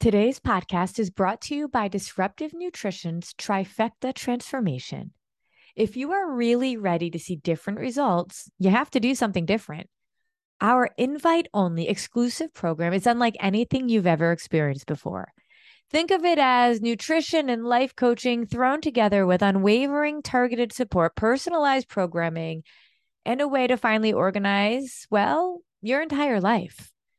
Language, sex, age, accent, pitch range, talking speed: English, female, 30-49, American, 200-290 Hz, 140 wpm